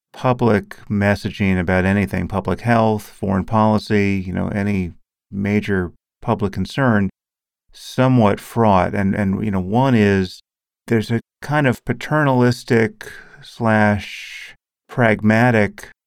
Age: 40-59